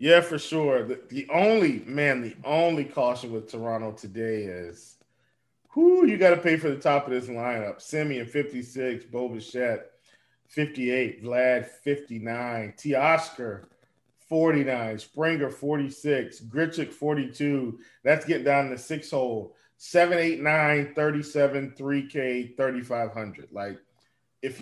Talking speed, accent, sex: 125 wpm, American, male